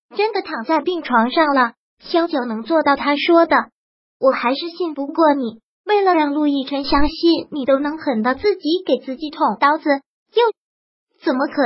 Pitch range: 270-330 Hz